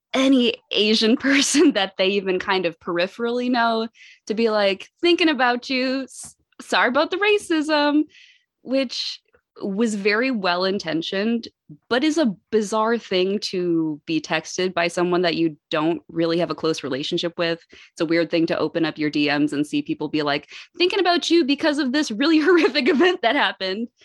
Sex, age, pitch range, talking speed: female, 20-39, 160-230 Hz, 170 wpm